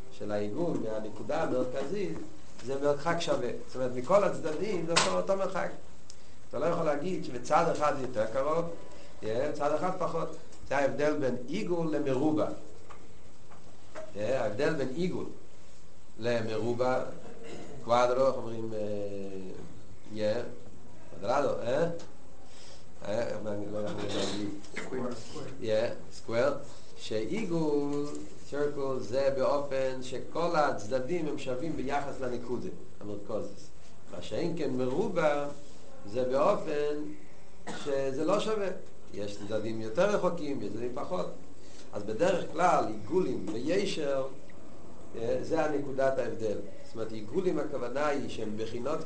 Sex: male